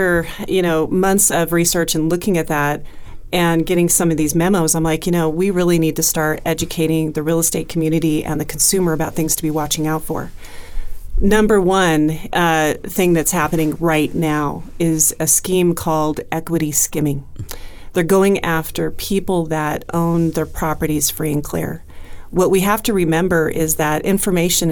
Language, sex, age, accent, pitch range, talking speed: English, female, 40-59, American, 155-175 Hz, 175 wpm